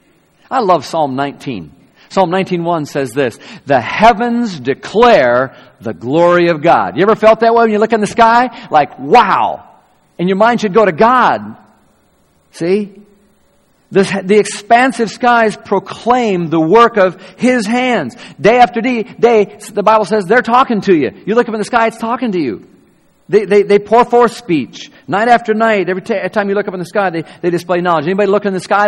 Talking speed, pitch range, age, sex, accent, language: 195 wpm, 155-215 Hz, 50-69, male, American, English